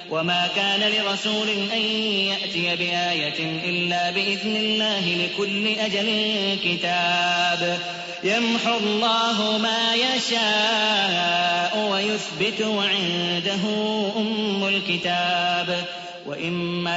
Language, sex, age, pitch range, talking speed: Arabic, male, 30-49, 175-215 Hz, 75 wpm